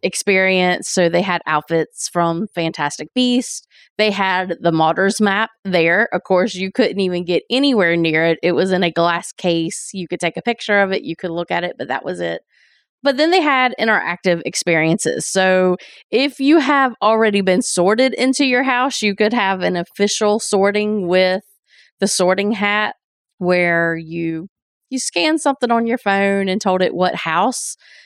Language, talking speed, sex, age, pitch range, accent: English, 180 wpm, female, 20-39, 170-210 Hz, American